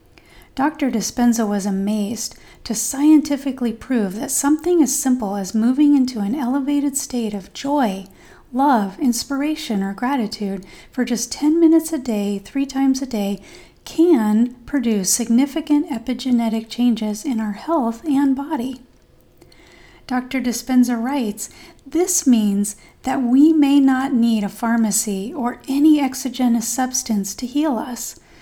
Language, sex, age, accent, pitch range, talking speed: English, female, 40-59, American, 220-270 Hz, 130 wpm